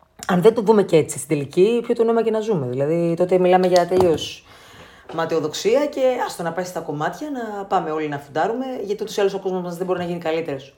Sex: female